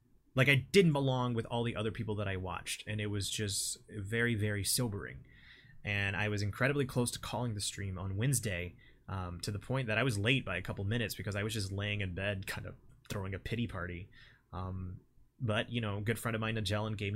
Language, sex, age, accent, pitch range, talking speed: English, male, 20-39, American, 100-125 Hz, 230 wpm